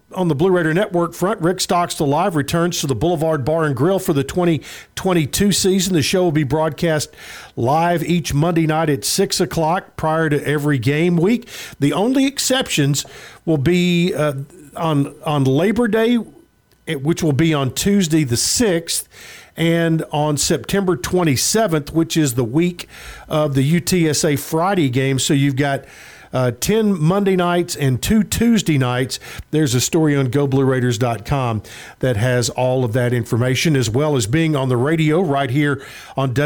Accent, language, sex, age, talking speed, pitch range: American, English, male, 50-69, 165 wpm, 135-170 Hz